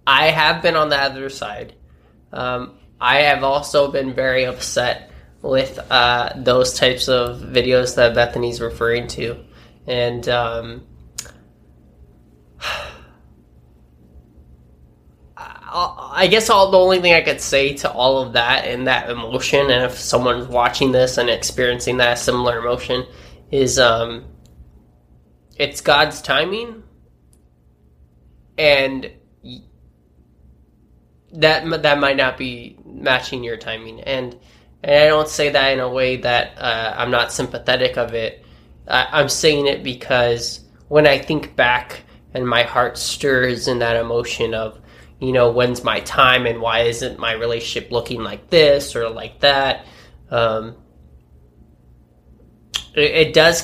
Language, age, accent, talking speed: English, 20-39, American, 130 wpm